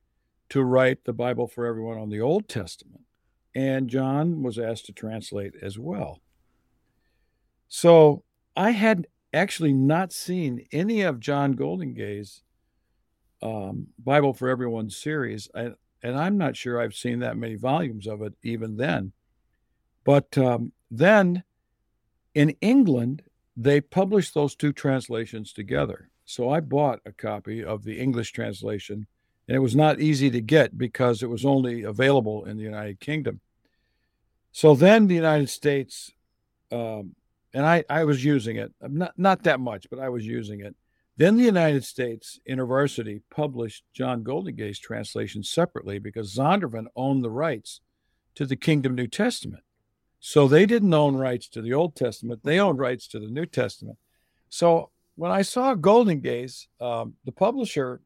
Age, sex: 60-79, male